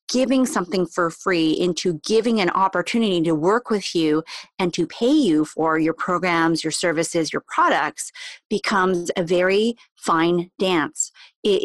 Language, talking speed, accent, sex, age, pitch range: English, 150 wpm, American, female, 30-49, 170-245 Hz